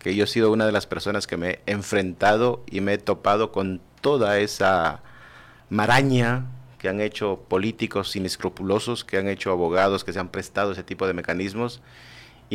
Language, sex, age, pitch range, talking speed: Spanish, male, 40-59, 95-120 Hz, 180 wpm